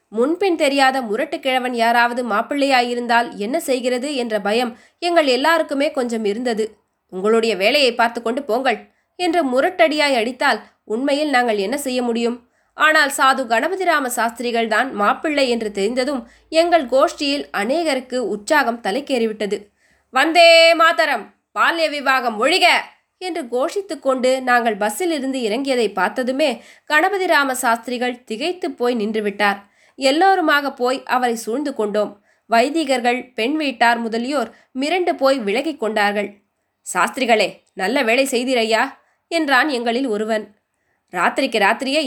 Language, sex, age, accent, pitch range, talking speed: Tamil, female, 20-39, native, 230-290 Hz, 115 wpm